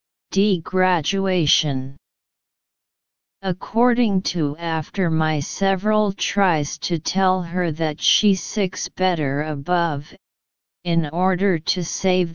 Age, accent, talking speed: 40-59, American, 95 wpm